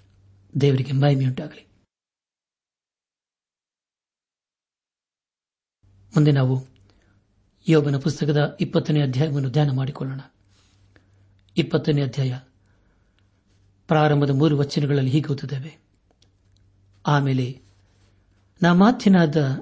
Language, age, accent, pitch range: Kannada, 60-79, native, 100-150 Hz